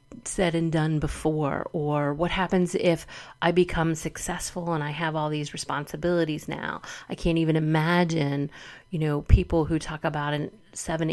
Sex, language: female, English